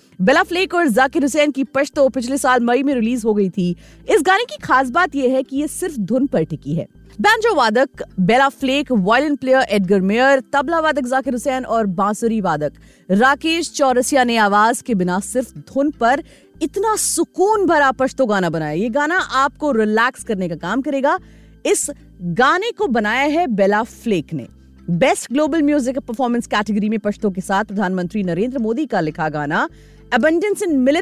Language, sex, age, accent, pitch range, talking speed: Hindi, female, 30-49, native, 215-290 Hz, 110 wpm